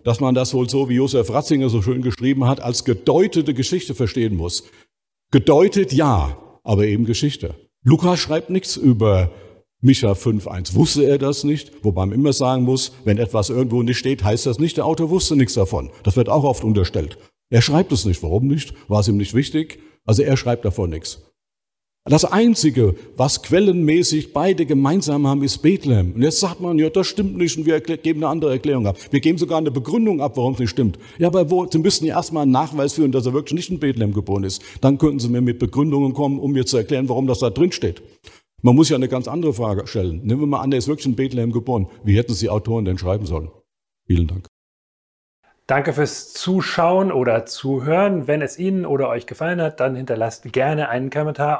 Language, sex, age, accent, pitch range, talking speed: German, male, 50-69, German, 115-155 Hz, 215 wpm